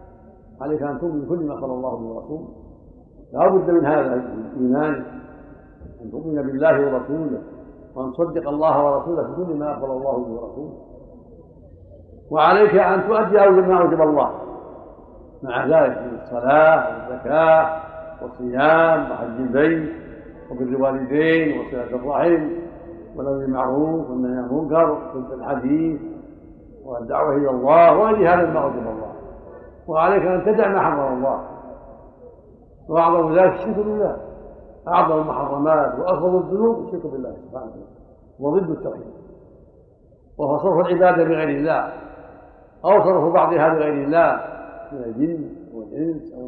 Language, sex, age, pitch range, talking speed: Arabic, male, 60-79, 130-170 Hz, 115 wpm